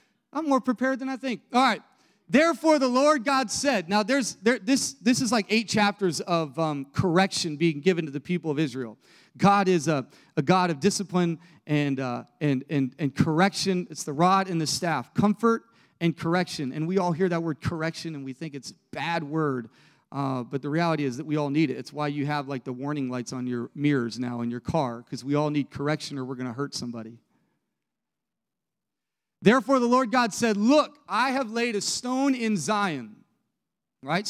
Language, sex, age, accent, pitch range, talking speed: English, male, 40-59, American, 150-240 Hz, 205 wpm